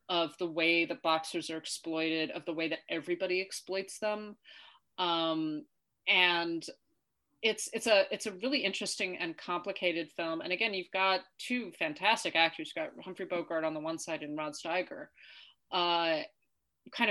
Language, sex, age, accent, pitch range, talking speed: English, female, 30-49, American, 165-220 Hz, 160 wpm